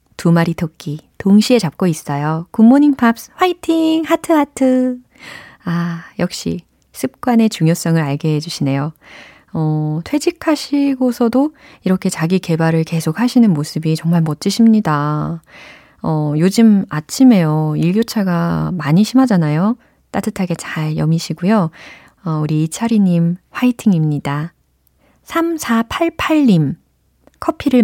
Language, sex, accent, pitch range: Korean, female, native, 160-220 Hz